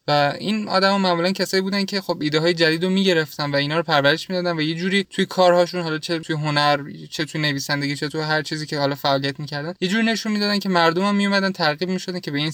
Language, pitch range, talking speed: Persian, 150-185 Hz, 230 wpm